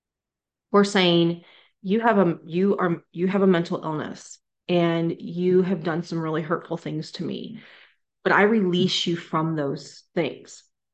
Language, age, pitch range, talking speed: English, 30-49, 165-185 Hz, 160 wpm